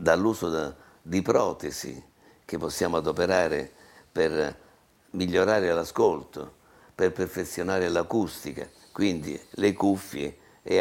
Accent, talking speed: native, 90 wpm